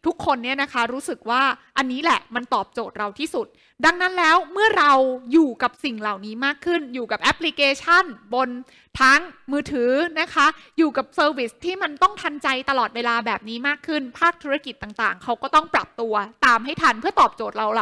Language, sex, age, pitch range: Thai, female, 20-39, 230-310 Hz